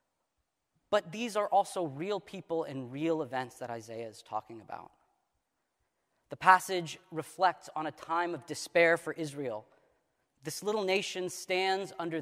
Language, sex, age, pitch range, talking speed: English, male, 40-59, 150-185 Hz, 140 wpm